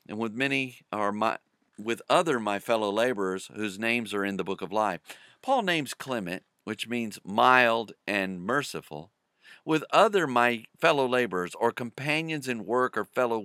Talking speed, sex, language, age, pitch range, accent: 160 wpm, male, English, 50-69, 105-135 Hz, American